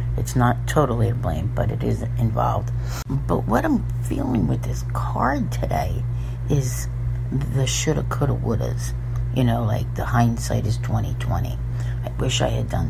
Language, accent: English, American